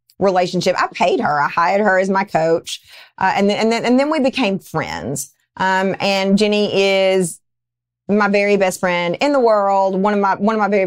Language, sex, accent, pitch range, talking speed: English, female, American, 170-215 Hz, 210 wpm